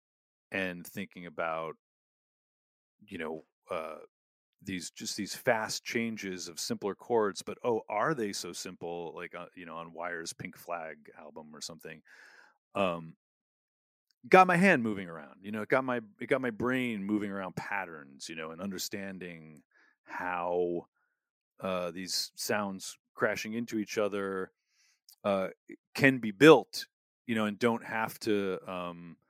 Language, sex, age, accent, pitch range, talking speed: English, male, 30-49, American, 85-110 Hz, 145 wpm